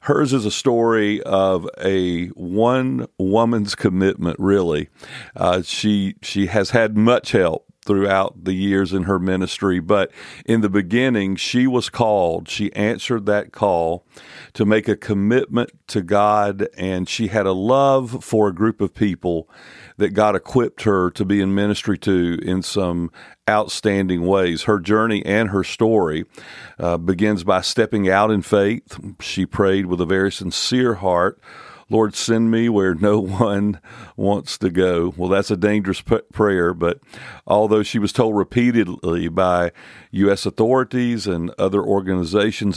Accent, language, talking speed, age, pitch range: American, English, 150 wpm, 40-59, 95-110 Hz